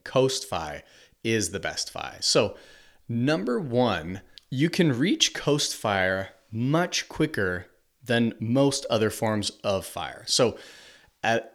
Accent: American